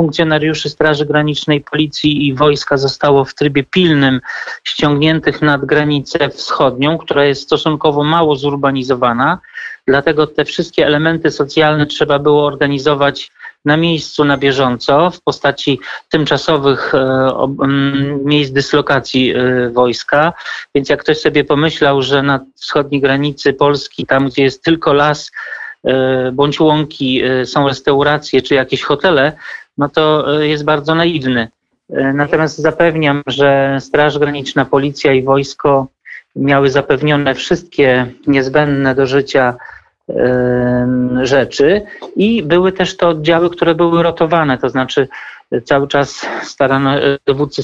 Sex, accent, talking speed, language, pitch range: male, native, 120 wpm, Polish, 135-150 Hz